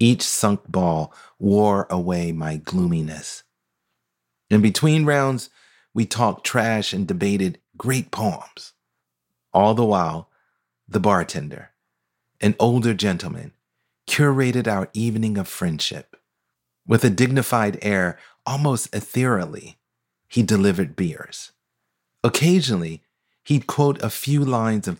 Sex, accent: male, American